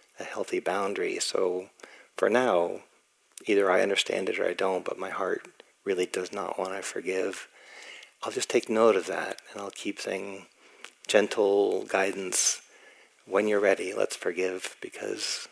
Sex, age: male, 40-59